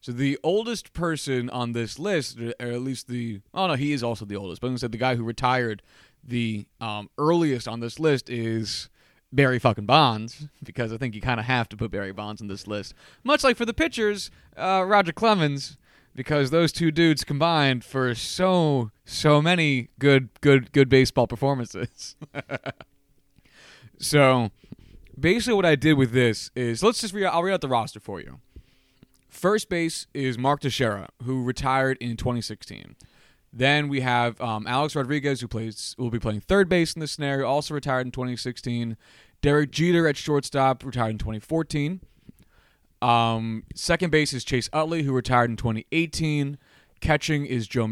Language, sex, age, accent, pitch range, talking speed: English, male, 20-39, American, 115-150 Hz, 170 wpm